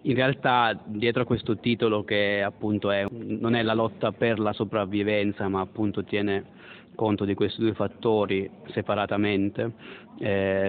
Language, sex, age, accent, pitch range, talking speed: Italian, male, 30-49, native, 105-125 Hz, 140 wpm